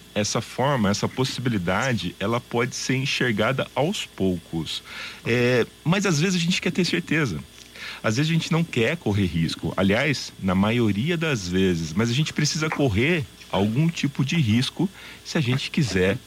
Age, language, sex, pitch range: 40-59, Portuguese, male, 95-145 Hz